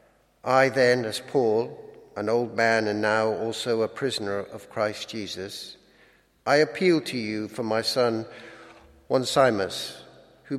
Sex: male